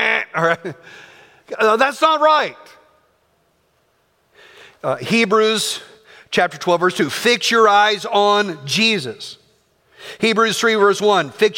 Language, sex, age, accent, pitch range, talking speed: English, male, 50-69, American, 210-300 Hz, 115 wpm